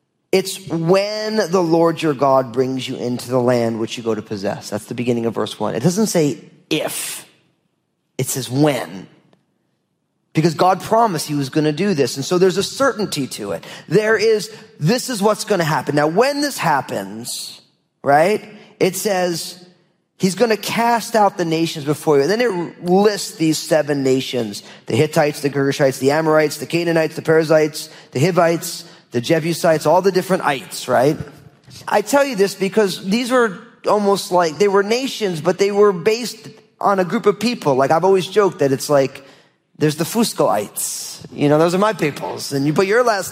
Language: English